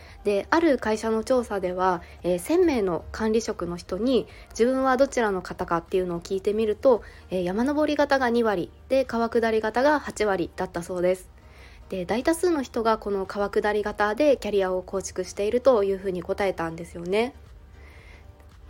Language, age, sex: Japanese, 20-39, female